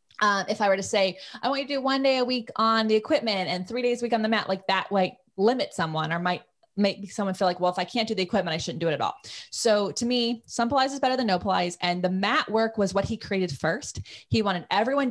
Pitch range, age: 180-230 Hz, 20-39